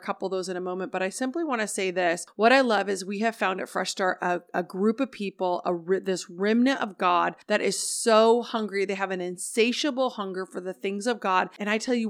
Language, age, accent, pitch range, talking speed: English, 30-49, American, 185-225 Hz, 260 wpm